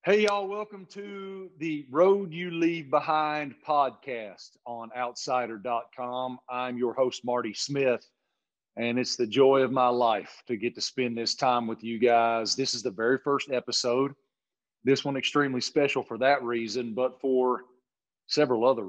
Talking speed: 160 wpm